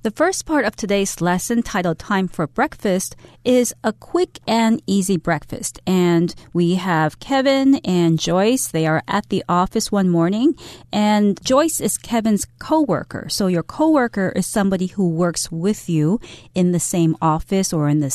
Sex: female